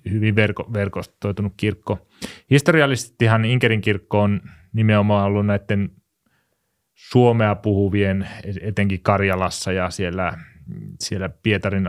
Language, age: Finnish, 30-49